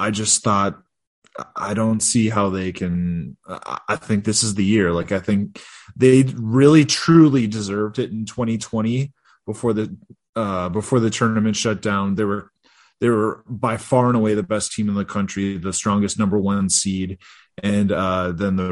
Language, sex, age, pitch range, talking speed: English, male, 20-39, 95-115 Hz, 180 wpm